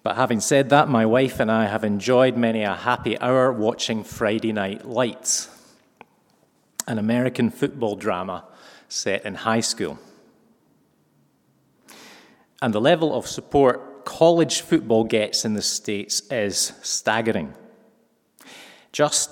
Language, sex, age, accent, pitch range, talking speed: English, male, 40-59, British, 105-130 Hz, 125 wpm